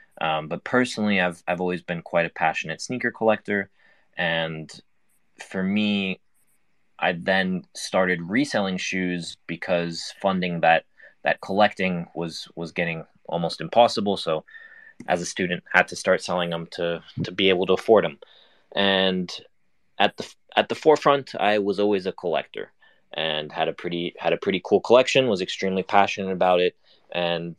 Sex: male